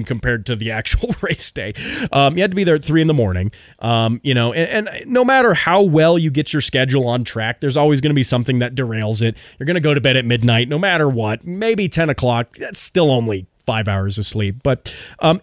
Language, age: English, 30-49